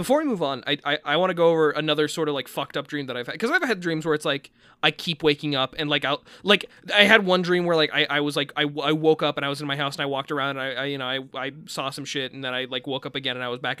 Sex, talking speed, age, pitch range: male, 350 wpm, 20-39, 140-170 Hz